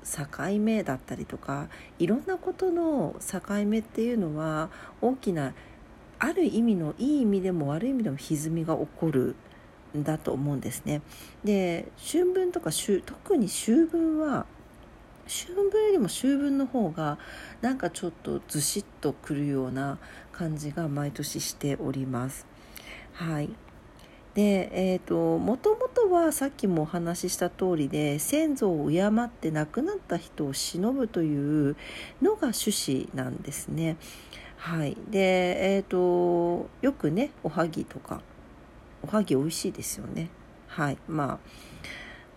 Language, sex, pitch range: Japanese, female, 155-240 Hz